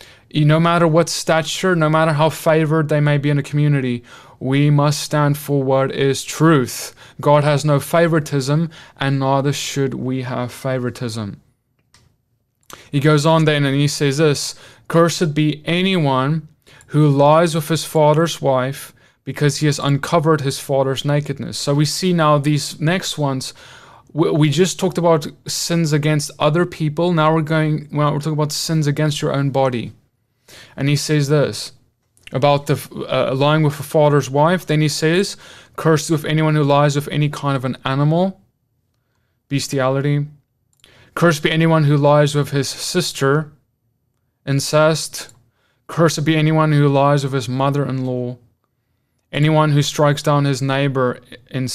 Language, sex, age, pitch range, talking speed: English, male, 20-39, 135-155 Hz, 155 wpm